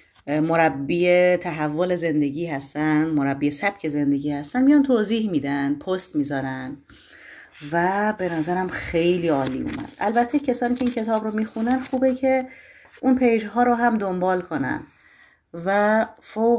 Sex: female